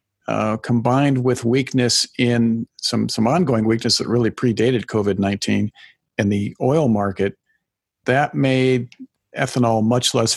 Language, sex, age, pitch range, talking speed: English, male, 50-69, 110-130 Hz, 125 wpm